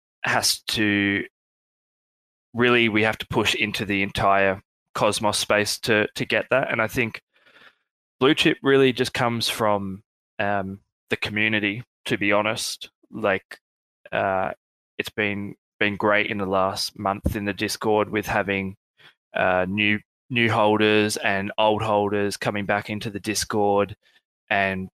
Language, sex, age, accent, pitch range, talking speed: English, male, 20-39, Australian, 100-110 Hz, 140 wpm